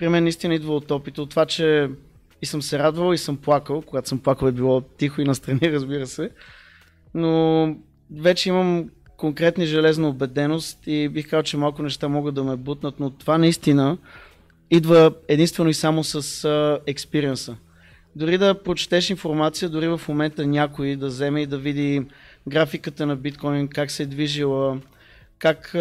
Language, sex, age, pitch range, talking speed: Bulgarian, male, 20-39, 140-160 Hz, 165 wpm